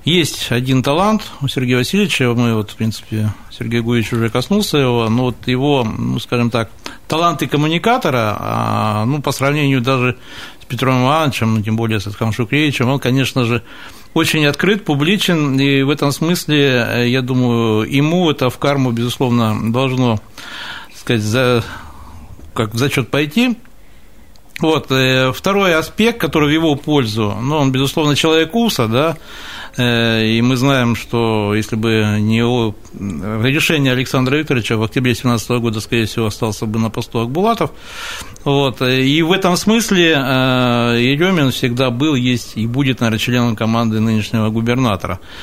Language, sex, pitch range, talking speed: Russian, male, 115-145 Hz, 150 wpm